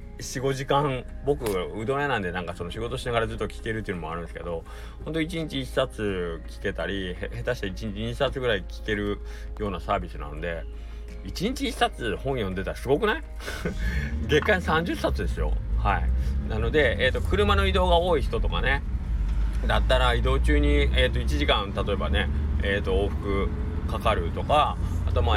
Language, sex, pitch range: Japanese, male, 75-105 Hz